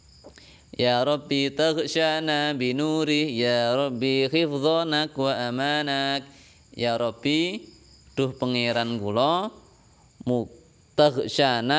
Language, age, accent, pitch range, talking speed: Indonesian, 20-39, native, 115-140 Hz, 75 wpm